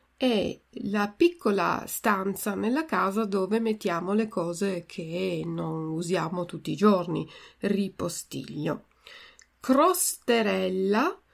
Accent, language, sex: native, Italian, female